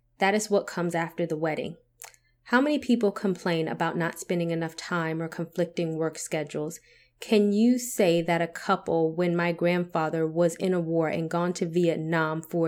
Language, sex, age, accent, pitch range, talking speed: English, female, 20-39, American, 165-190 Hz, 180 wpm